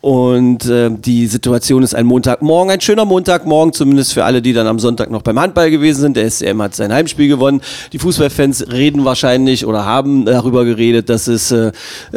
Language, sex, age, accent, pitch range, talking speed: German, male, 40-59, German, 120-150 Hz, 190 wpm